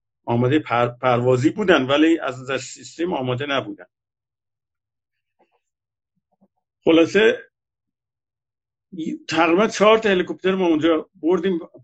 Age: 50-69